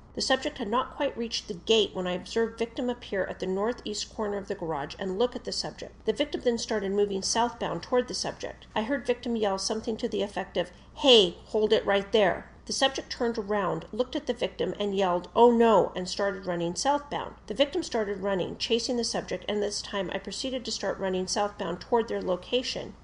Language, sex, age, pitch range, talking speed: English, female, 40-59, 195-245 Hz, 215 wpm